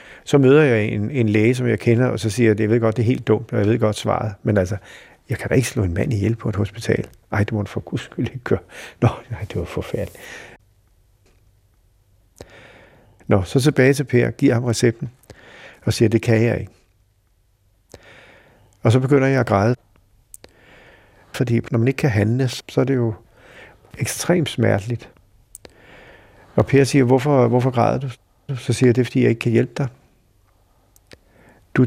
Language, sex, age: Danish, male, 60-79